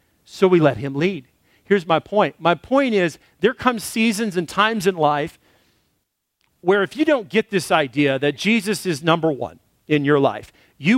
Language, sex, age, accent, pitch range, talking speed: English, male, 40-59, American, 150-210 Hz, 185 wpm